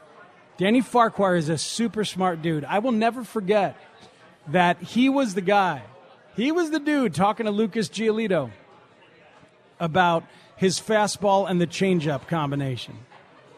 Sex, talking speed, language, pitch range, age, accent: male, 135 wpm, English, 175-245 Hz, 40-59, American